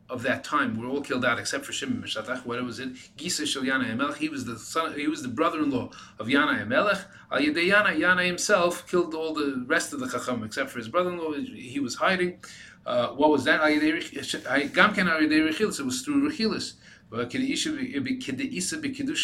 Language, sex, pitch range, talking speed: English, male, 120-180 Hz, 180 wpm